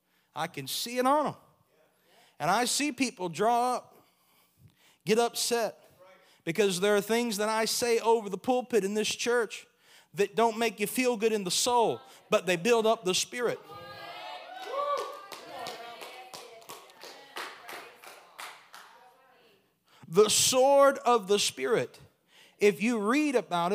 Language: English